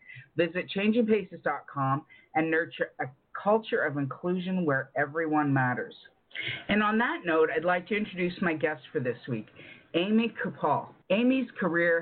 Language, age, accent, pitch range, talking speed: English, 50-69, American, 135-170 Hz, 140 wpm